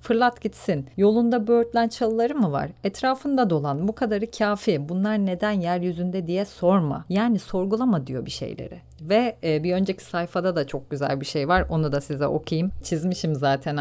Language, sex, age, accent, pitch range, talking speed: Turkish, female, 40-59, native, 155-205 Hz, 165 wpm